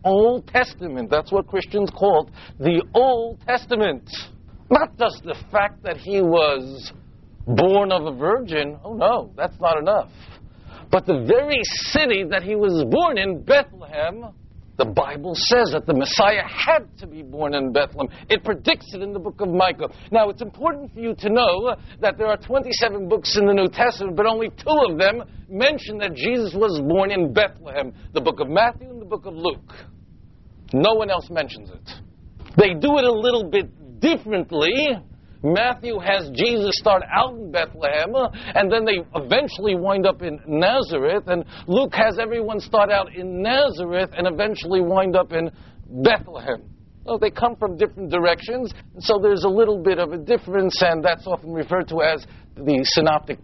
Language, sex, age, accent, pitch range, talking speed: English, male, 50-69, American, 165-230 Hz, 175 wpm